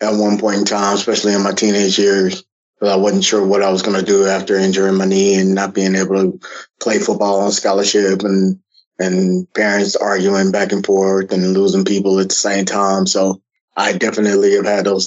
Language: English